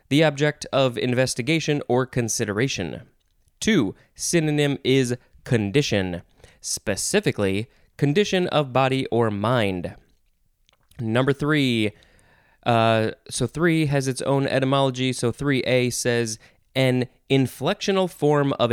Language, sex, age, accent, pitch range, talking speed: English, male, 20-39, American, 115-155 Hz, 105 wpm